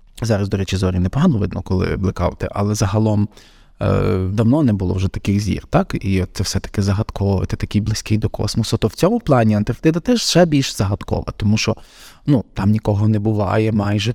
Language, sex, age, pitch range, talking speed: Ukrainian, male, 20-39, 100-130 Hz, 185 wpm